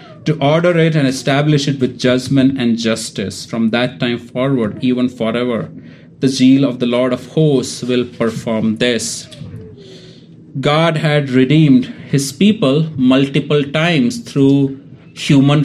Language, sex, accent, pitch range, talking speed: English, male, Indian, 130-155 Hz, 135 wpm